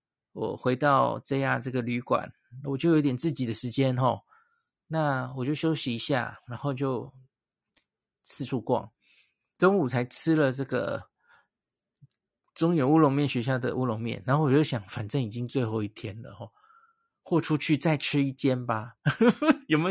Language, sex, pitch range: Chinese, male, 125-160 Hz